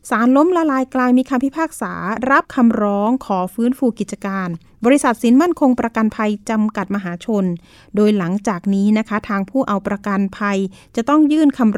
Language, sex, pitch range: Thai, female, 205-255 Hz